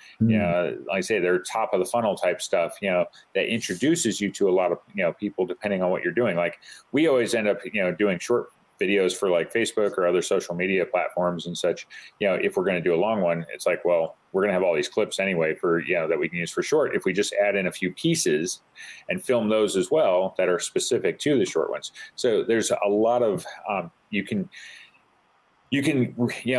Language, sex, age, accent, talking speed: English, male, 40-59, American, 245 wpm